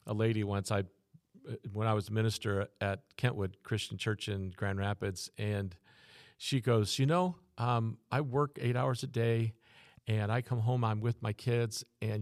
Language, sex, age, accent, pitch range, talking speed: English, male, 50-69, American, 105-130 Hz, 180 wpm